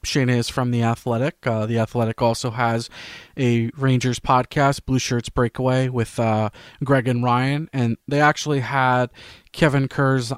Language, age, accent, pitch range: English, 20-39, American, 120-135 Hz